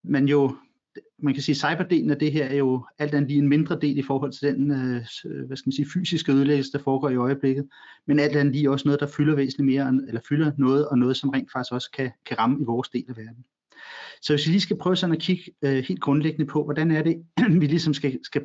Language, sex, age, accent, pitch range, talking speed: Danish, male, 30-49, native, 135-155 Hz, 250 wpm